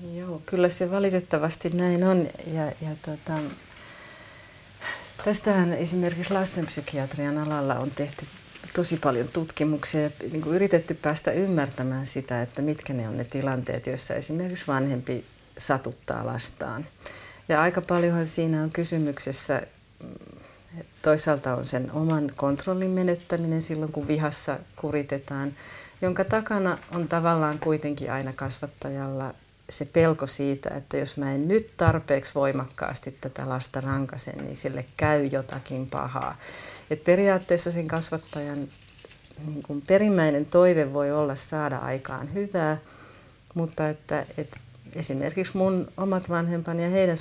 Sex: female